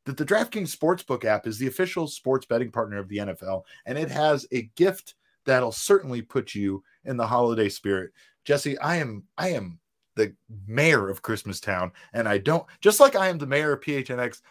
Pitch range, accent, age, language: 110-155 Hz, American, 30-49, English